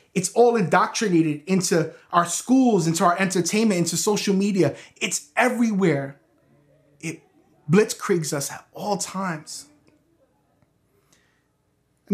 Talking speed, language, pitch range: 105 wpm, English, 140-185 Hz